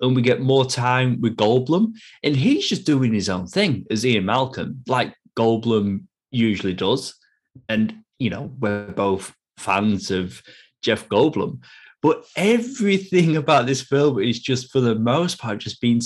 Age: 30-49